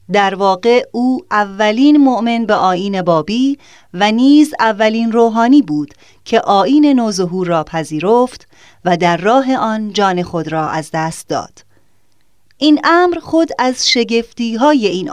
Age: 30-49